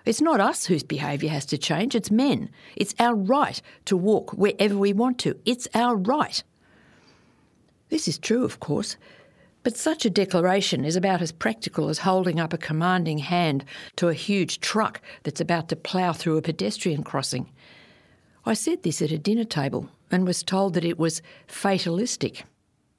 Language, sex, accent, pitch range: English, female, Australian, 160-215 Hz